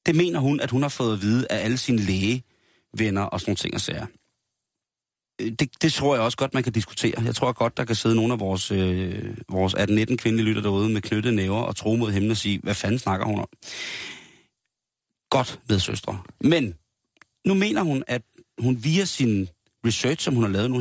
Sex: male